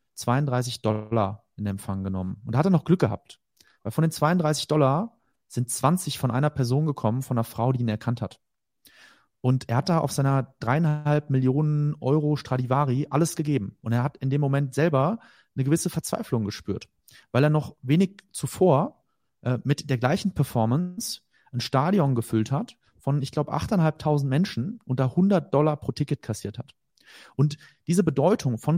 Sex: male